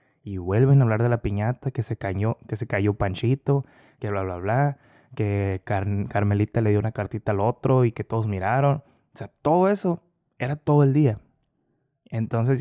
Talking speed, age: 190 wpm, 20-39